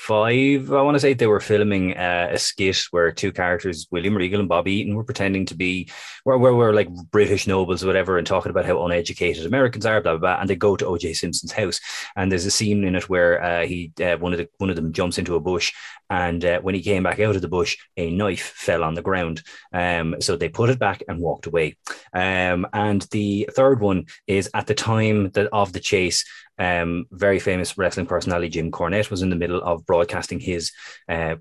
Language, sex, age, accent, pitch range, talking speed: English, male, 20-39, Irish, 85-100 Hz, 230 wpm